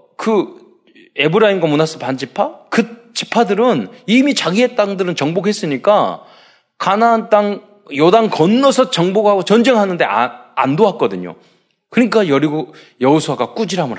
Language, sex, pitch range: Korean, male, 135-220 Hz